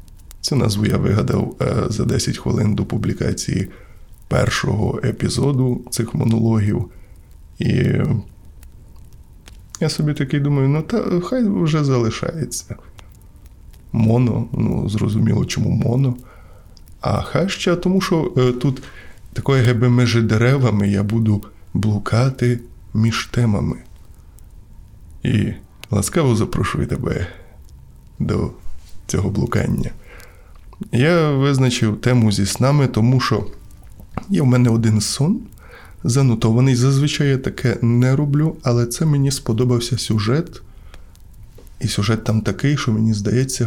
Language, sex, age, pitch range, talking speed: Ukrainian, male, 20-39, 100-125 Hz, 110 wpm